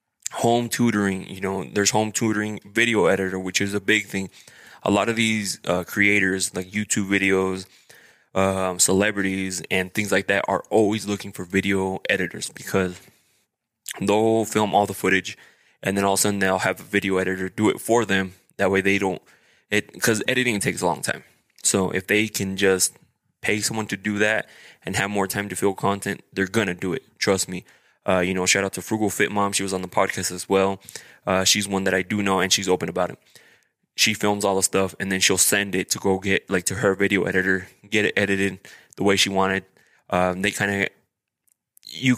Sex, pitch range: male, 95-105 Hz